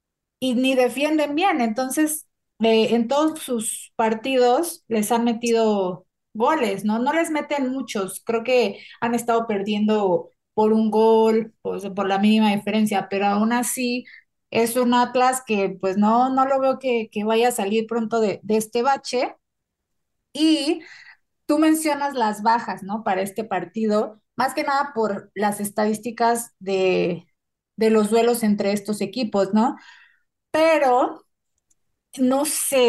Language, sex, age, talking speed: Spanish, female, 30-49, 145 wpm